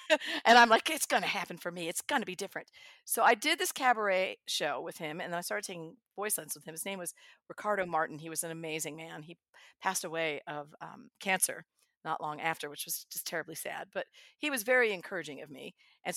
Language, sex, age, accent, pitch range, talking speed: English, female, 50-69, American, 165-230 Hz, 230 wpm